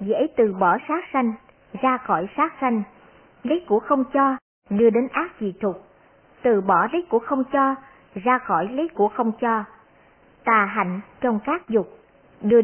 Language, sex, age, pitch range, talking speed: Vietnamese, male, 60-79, 205-270 Hz, 170 wpm